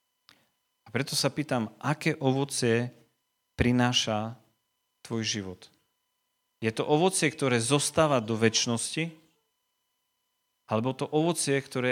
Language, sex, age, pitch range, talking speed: Slovak, male, 40-59, 110-170 Hz, 95 wpm